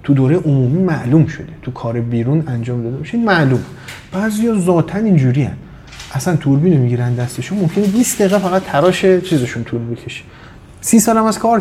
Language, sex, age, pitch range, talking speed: Persian, male, 30-49, 125-175 Hz, 175 wpm